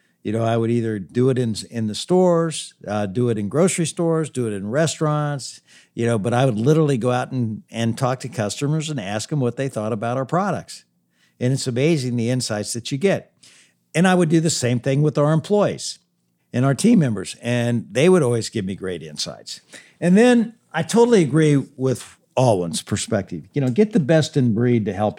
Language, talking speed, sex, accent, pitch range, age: English, 215 wpm, male, American, 110-150 Hz, 60-79